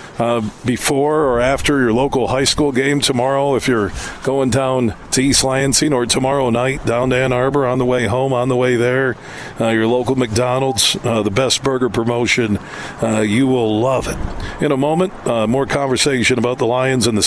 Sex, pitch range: male, 120-140 Hz